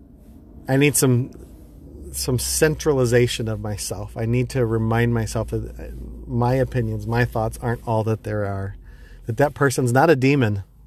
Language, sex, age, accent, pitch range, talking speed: English, male, 30-49, American, 110-130 Hz, 155 wpm